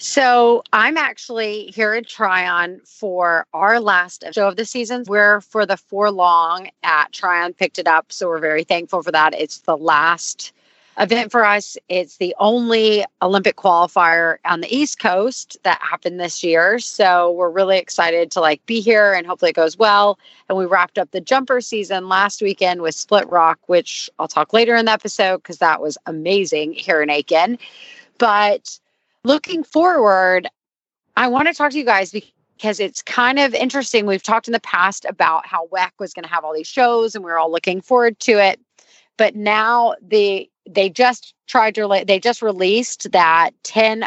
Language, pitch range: English, 175-225 Hz